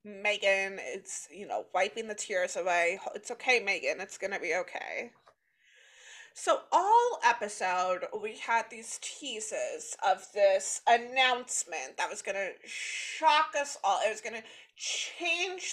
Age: 30-49